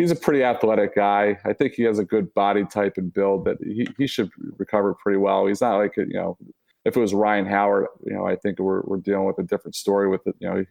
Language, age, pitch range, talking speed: English, 30-49, 95-105 Hz, 270 wpm